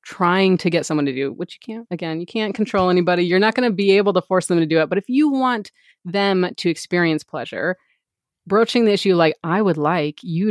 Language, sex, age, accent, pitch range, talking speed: English, female, 30-49, American, 165-200 Hz, 240 wpm